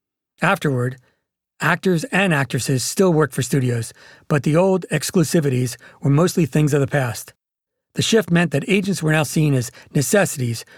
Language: English